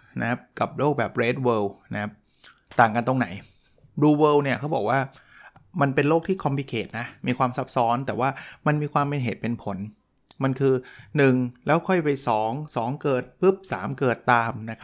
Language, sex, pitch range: Thai, male, 115-145 Hz